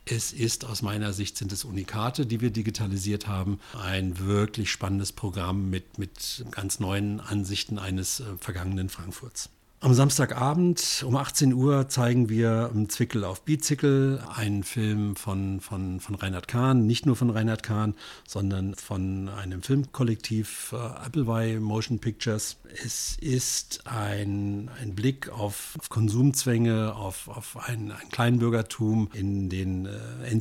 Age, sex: 50-69, male